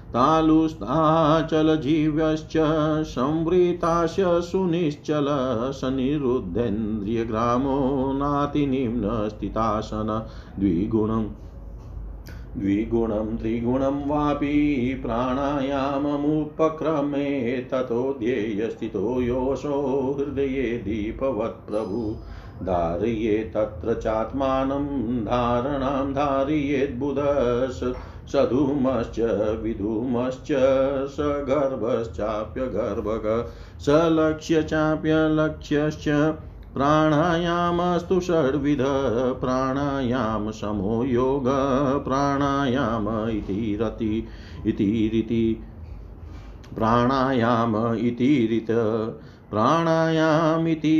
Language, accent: Hindi, native